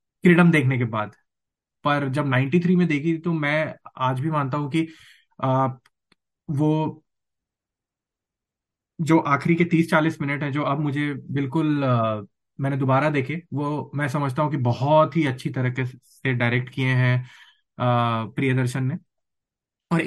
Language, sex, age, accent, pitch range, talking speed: Hindi, male, 20-39, native, 130-165 Hz, 140 wpm